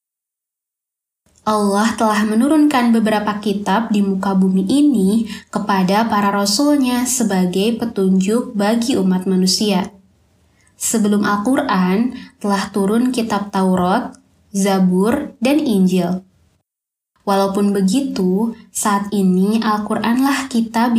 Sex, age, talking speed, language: female, 20-39, 90 wpm, Indonesian